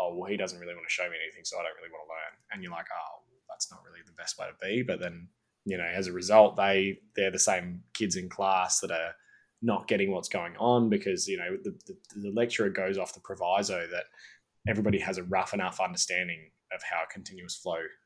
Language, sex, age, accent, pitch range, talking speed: English, male, 20-39, Australian, 95-120 Hz, 245 wpm